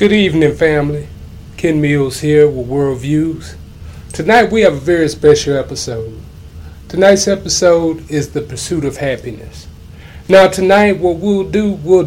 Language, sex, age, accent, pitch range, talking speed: English, male, 30-49, American, 125-180 Hz, 140 wpm